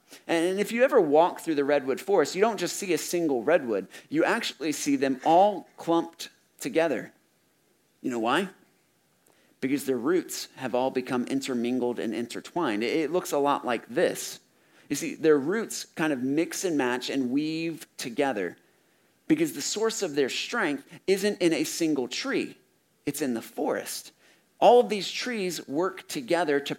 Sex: male